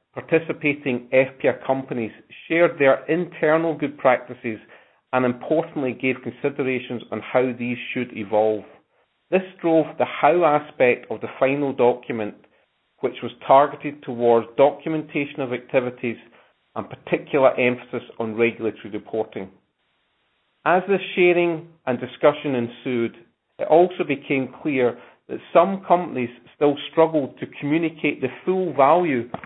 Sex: male